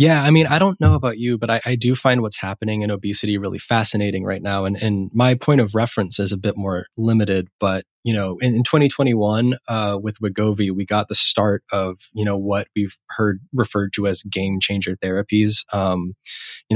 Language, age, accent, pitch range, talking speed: English, 20-39, American, 95-115 Hz, 210 wpm